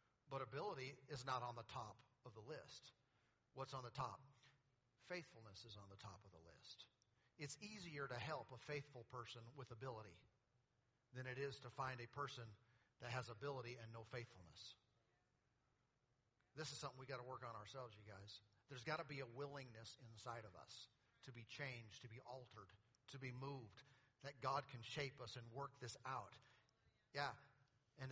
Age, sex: 40-59, male